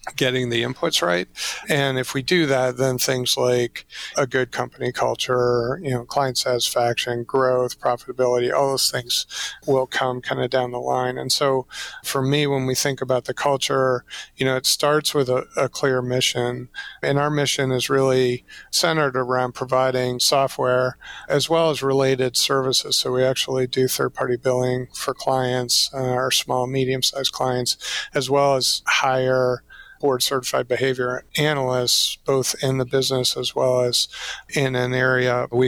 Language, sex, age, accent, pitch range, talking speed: English, male, 40-59, American, 125-135 Hz, 160 wpm